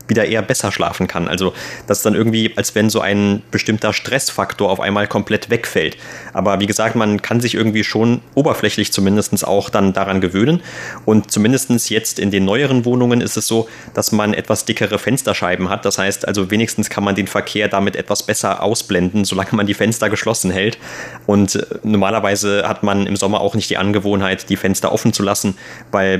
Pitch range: 100-110 Hz